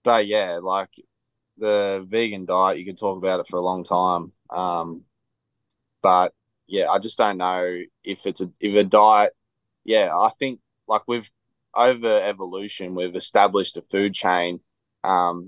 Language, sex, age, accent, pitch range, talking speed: English, male, 20-39, Australian, 95-115 Hz, 160 wpm